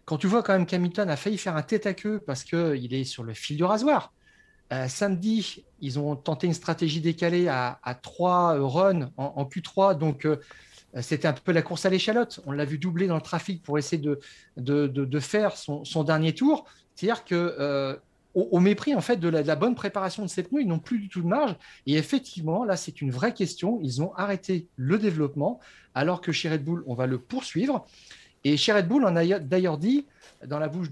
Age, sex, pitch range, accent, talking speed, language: 40-59, male, 145-200 Hz, French, 225 wpm, French